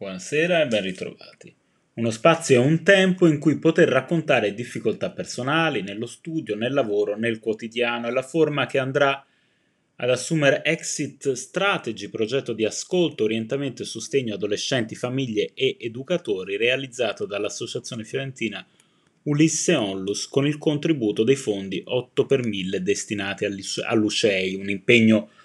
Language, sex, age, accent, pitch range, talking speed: Italian, male, 30-49, native, 115-160 Hz, 130 wpm